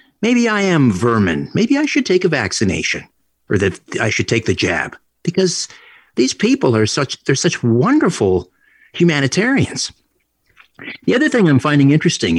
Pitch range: 105-155 Hz